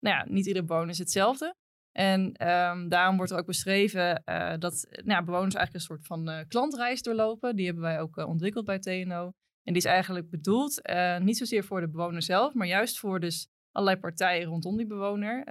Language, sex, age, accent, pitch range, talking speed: Dutch, female, 20-39, Dutch, 170-195 Hz, 210 wpm